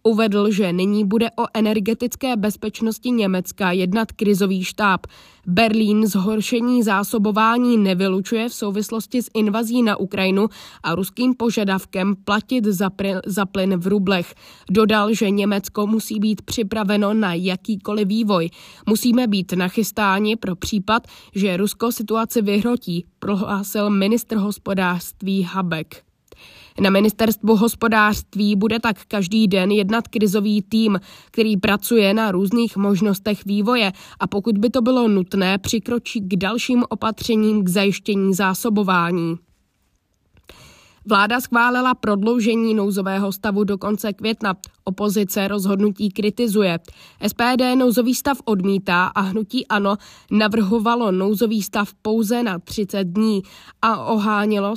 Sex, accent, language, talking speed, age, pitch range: female, native, Czech, 120 wpm, 20-39, 195-225 Hz